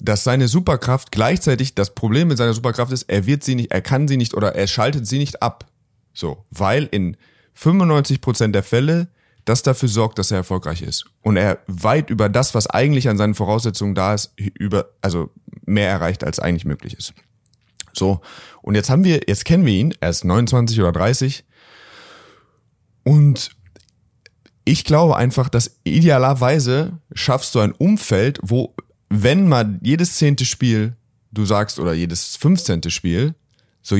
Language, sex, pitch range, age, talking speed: German, male, 105-140 Hz, 30-49, 165 wpm